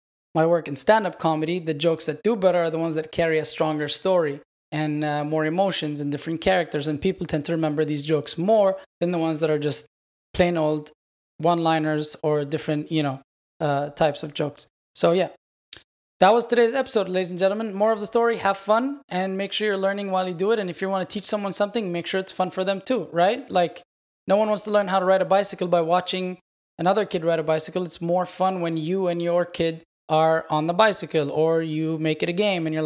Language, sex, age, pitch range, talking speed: English, male, 20-39, 160-195 Hz, 235 wpm